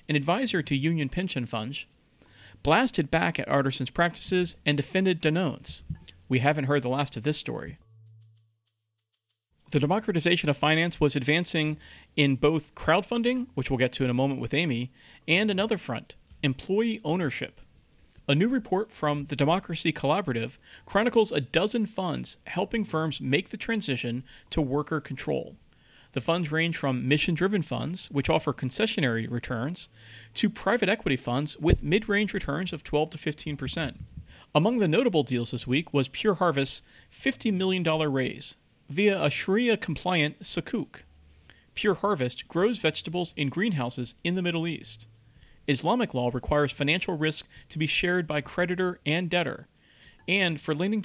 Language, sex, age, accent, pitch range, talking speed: English, male, 40-59, American, 130-180 Hz, 145 wpm